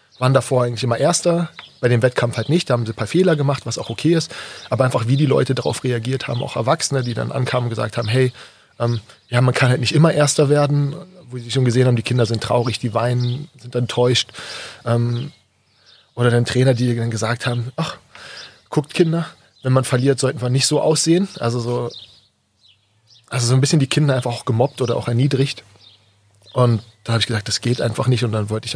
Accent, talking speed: German, 220 wpm